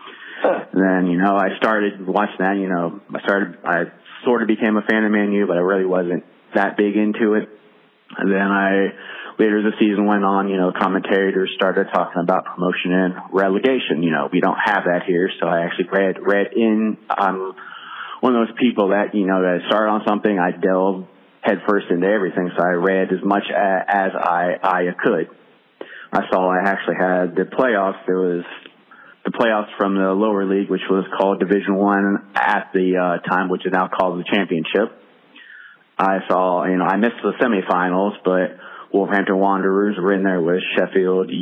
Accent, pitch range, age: American, 95-100 Hz, 30-49